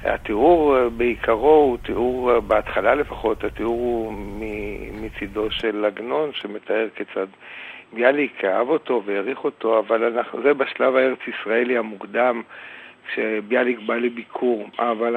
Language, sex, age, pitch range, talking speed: Hebrew, male, 60-79, 110-125 Hz, 110 wpm